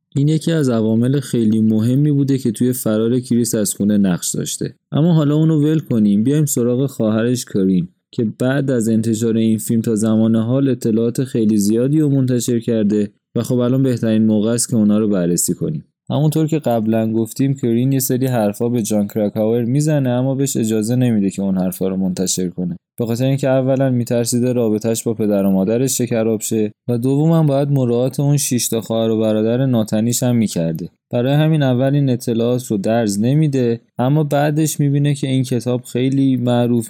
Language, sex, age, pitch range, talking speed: Persian, male, 20-39, 110-135 Hz, 180 wpm